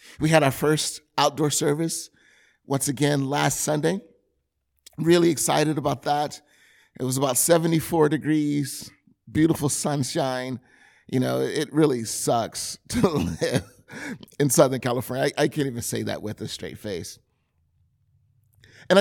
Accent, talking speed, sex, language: American, 135 wpm, male, English